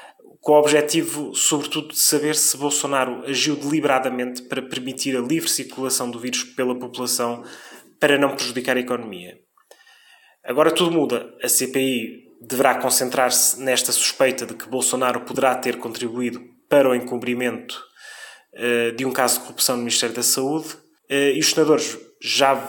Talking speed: 145 wpm